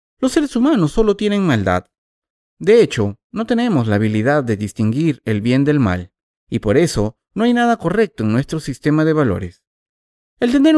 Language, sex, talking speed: Spanish, male, 180 wpm